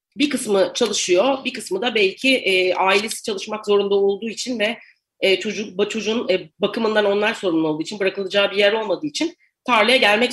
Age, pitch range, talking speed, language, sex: 40-59, 185-250 Hz, 170 wpm, Turkish, female